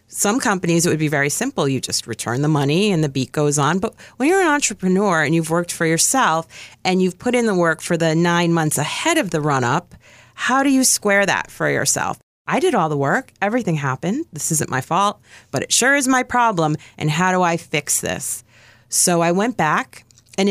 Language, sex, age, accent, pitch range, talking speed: English, female, 30-49, American, 155-195 Hz, 225 wpm